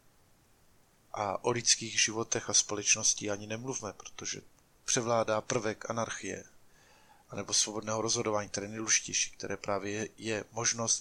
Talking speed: 125 wpm